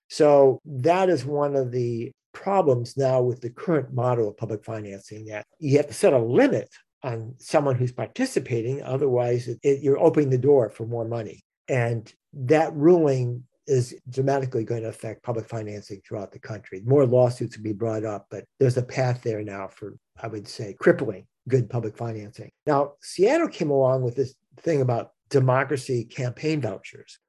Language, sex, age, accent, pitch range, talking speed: English, male, 60-79, American, 120-145 Hz, 170 wpm